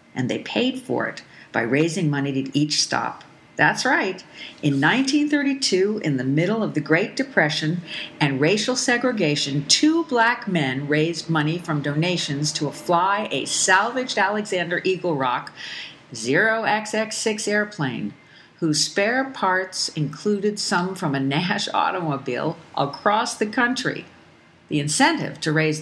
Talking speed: 130 wpm